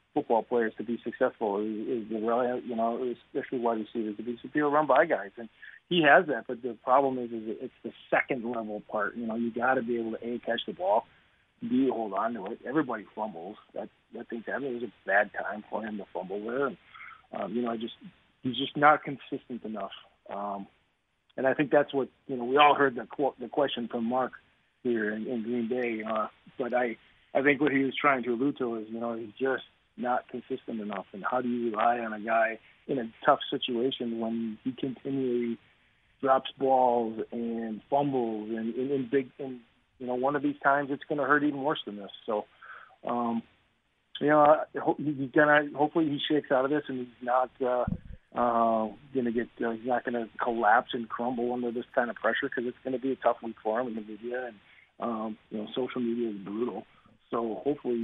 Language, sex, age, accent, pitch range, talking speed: English, male, 40-59, American, 115-130 Hz, 215 wpm